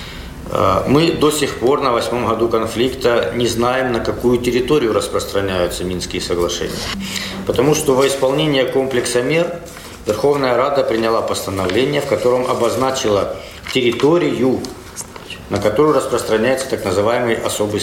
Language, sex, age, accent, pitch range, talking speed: Russian, male, 50-69, native, 95-130 Hz, 120 wpm